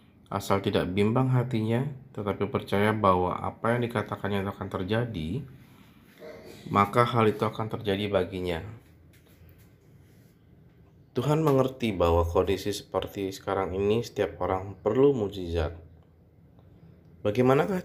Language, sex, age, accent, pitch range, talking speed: Indonesian, male, 20-39, native, 95-120 Hz, 105 wpm